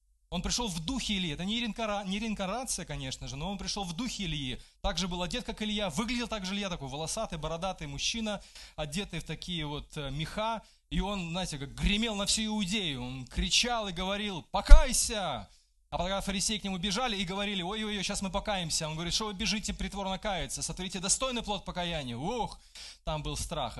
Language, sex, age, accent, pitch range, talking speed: Russian, male, 20-39, native, 135-195 Hz, 190 wpm